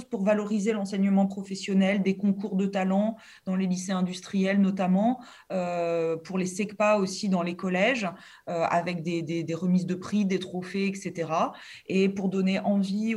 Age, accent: 30-49, French